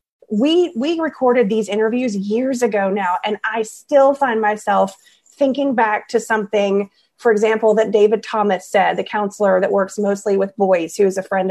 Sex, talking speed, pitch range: female, 175 wpm, 200-235 Hz